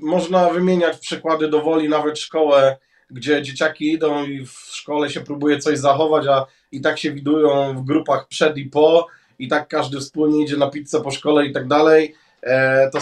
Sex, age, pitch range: male, 20-39, 140-155 Hz